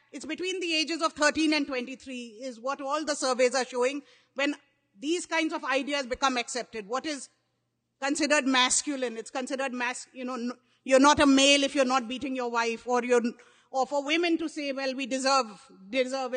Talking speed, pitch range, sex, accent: 200 wpm, 245-295 Hz, female, Indian